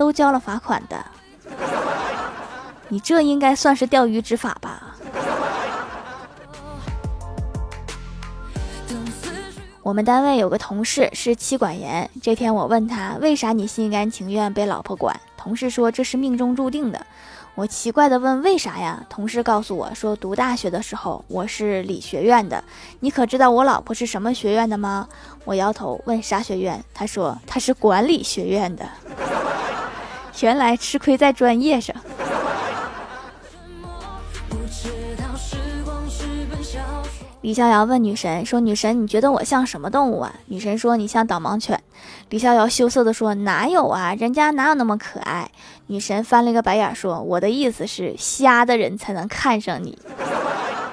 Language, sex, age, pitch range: Chinese, female, 20-39, 205-260 Hz